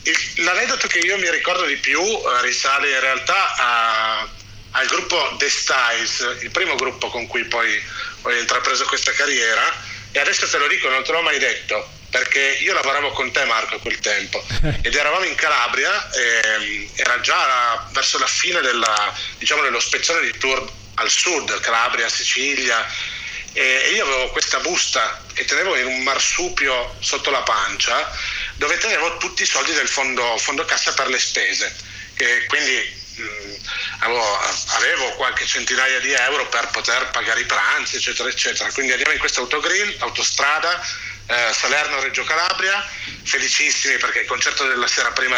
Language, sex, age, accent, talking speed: Italian, male, 40-59, native, 160 wpm